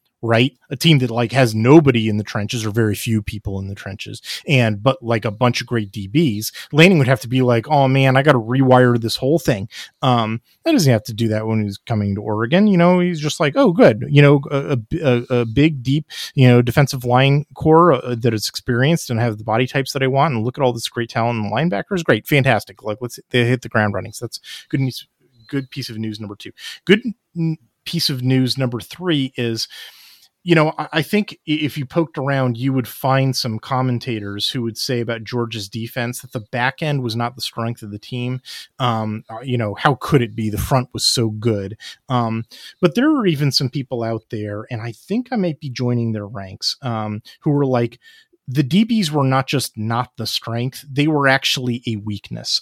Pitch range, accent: 115-140 Hz, American